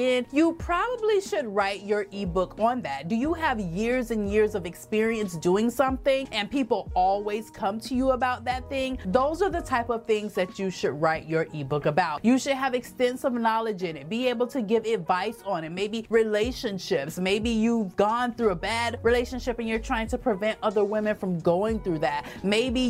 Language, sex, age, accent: English, female, 30-49, American